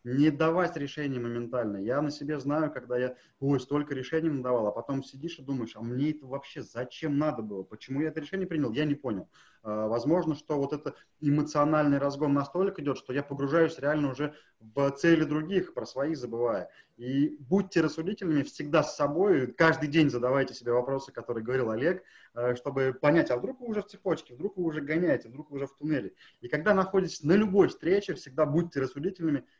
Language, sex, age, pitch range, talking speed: Russian, male, 20-39, 130-160 Hz, 190 wpm